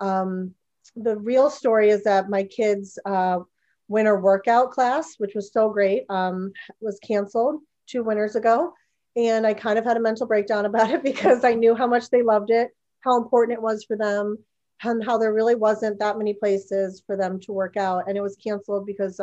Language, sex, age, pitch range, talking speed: English, female, 30-49, 195-225 Hz, 200 wpm